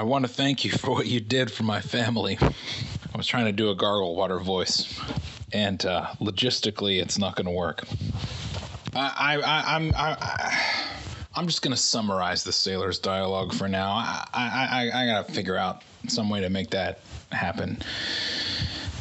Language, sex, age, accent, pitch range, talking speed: English, male, 30-49, American, 95-115 Hz, 185 wpm